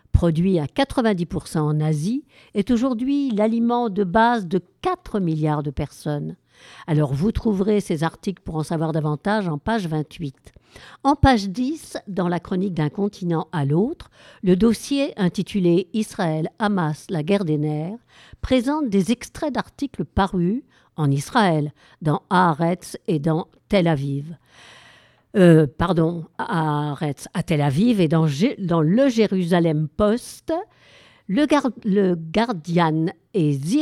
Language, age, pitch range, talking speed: French, 50-69, 160-230 Hz, 135 wpm